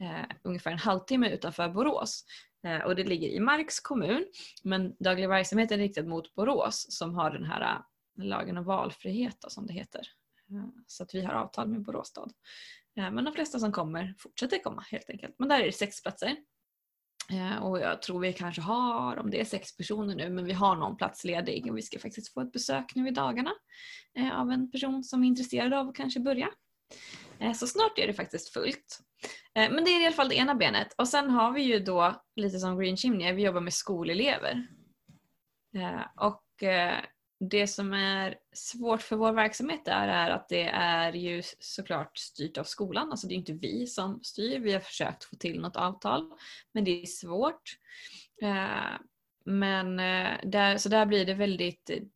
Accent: native